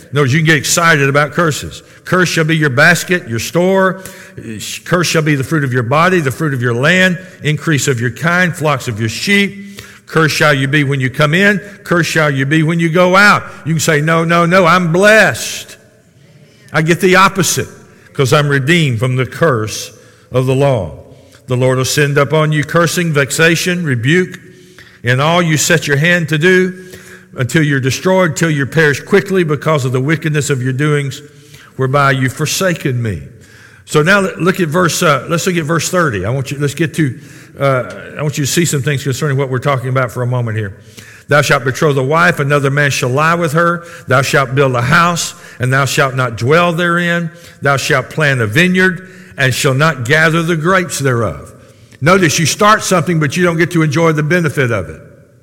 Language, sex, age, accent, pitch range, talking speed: English, male, 60-79, American, 135-170 Hz, 205 wpm